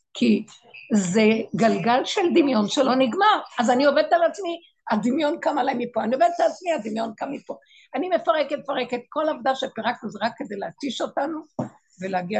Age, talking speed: 50-69, 170 wpm